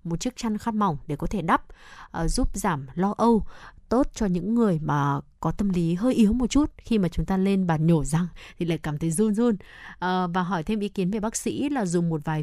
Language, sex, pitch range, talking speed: Vietnamese, female, 175-230 Hz, 255 wpm